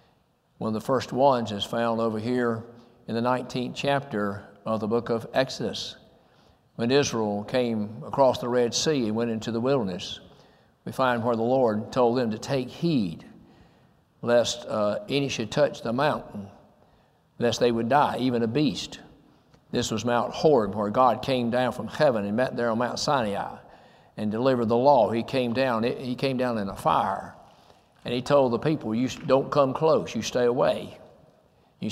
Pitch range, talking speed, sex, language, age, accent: 115-135 Hz, 180 wpm, male, English, 60-79, American